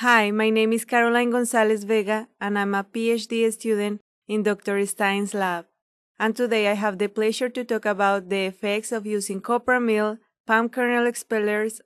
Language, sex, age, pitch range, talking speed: English, female, 20-39, 200-225 Hz, 170 wpm